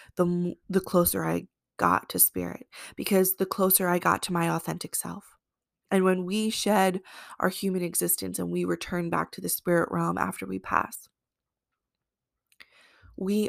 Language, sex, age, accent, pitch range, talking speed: English, female, 20-39, American, 165-185 Hz, 155 wpm